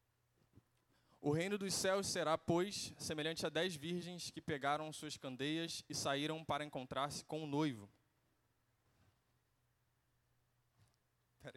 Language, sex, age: Portuguese, male, 20-39